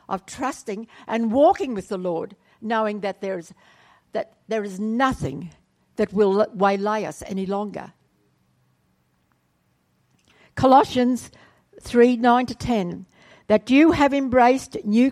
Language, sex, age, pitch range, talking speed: English, female, 60-79, 205-265 Hz, 115 wpm